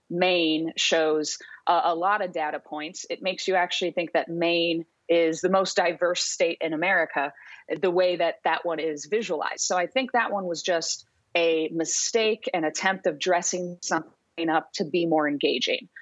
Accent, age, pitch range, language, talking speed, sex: American, 30-49, 165-195 Hz, English, 180 wpm, female